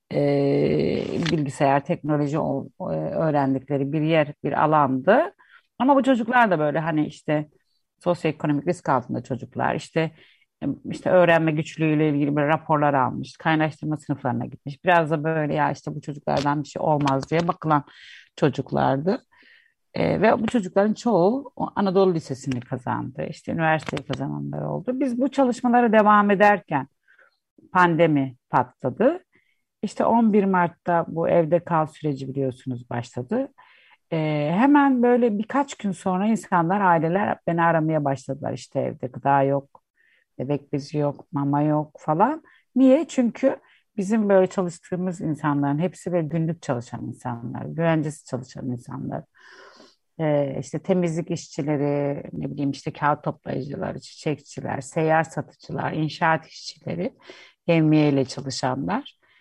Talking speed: 125 wpm